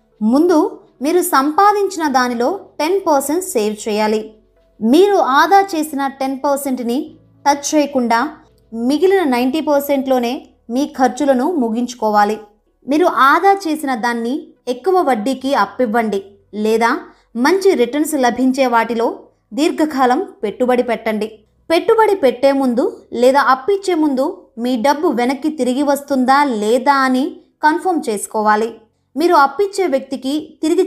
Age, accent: 20-39, native